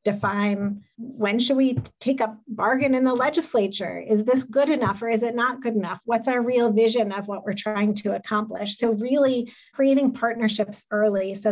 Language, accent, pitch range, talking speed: English, American, 200-235 Hz, 190 wpm